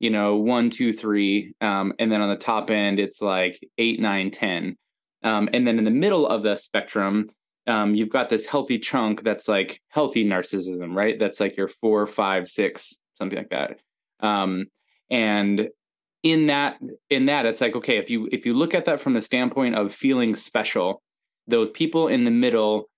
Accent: American